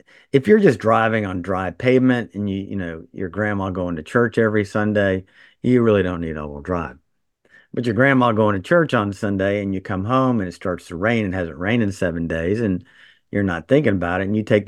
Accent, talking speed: American, 230 wpm